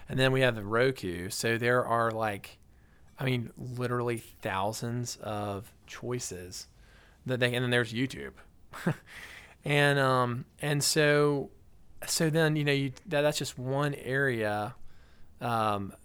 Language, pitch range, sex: English, 110-135 Hz, male